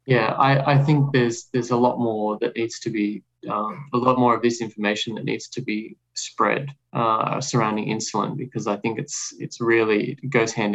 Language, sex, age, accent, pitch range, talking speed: English, male, 20-39, Australian, 110-125 Hz, 200 wpm